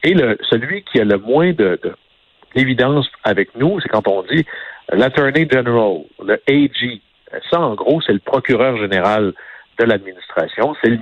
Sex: male